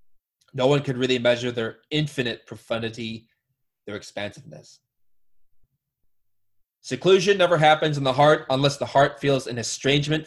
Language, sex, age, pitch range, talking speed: English, male, 20-39, 110-140 Hz, 130 wpm